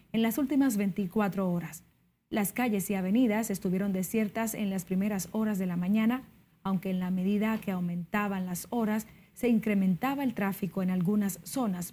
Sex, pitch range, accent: female, 190-220 Hz, American